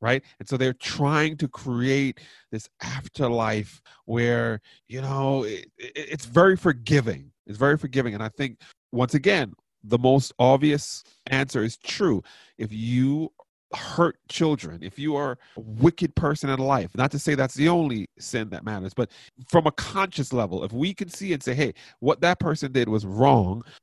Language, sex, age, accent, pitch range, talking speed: English, male, 40-59, American, 125-155 Hz, 170 wpm